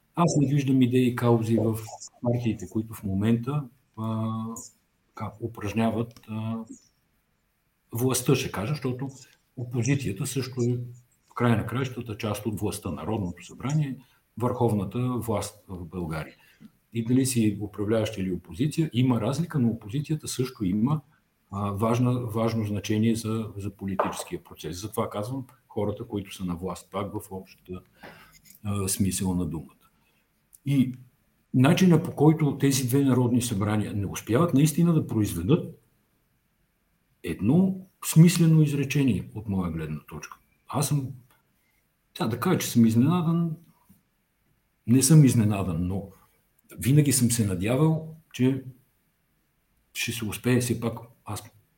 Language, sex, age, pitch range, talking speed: English, male, 50-69, 105-135 Hz, 125 wpm